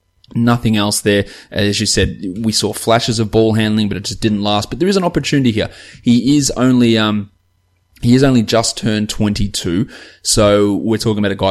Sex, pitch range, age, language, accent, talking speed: male, 95-115 Hz, 20-39, English, Australian, 205 wpm